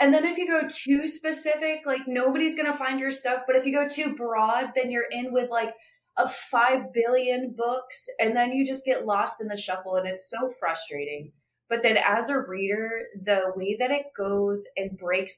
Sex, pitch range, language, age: female, 185-260 Hz, English, 20-39